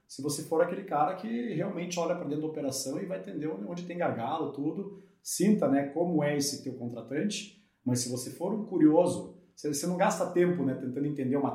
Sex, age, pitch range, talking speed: male, 30-49, 140-175 Hz, 215 wpm